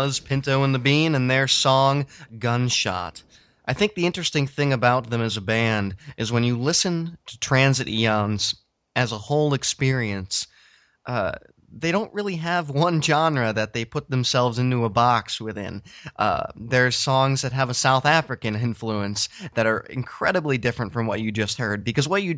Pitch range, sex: 115-145 Hz, male